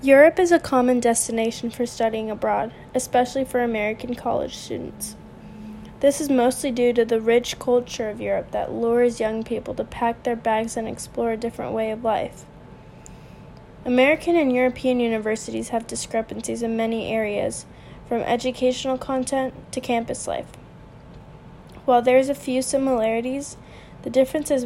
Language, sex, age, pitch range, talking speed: English, female, 10-29, 230-265 Hz, 150 wpm